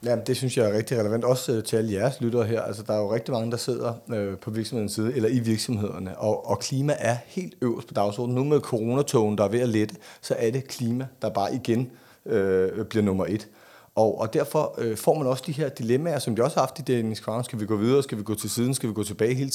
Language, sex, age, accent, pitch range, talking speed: Danish, male, 30-49, native, 110-130 Hz, 260 wpm